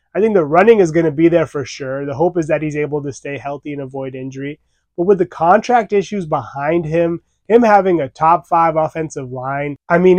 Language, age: English, 20-39